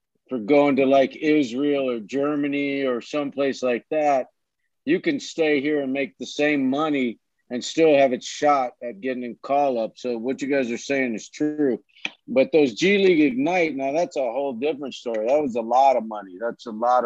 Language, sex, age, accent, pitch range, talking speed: Hebrew, male, 50-69, American, 125-150 Hz, 210 wpm